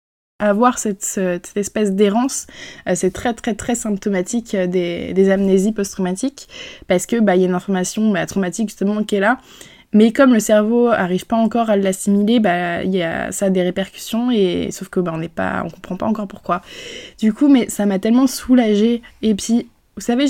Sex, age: female, 20-39